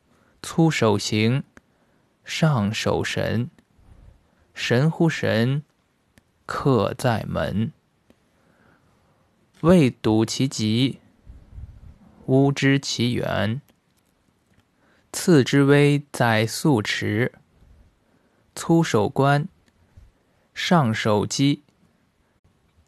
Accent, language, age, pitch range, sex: native, Chinese, 20-39, 110-155 Hz, male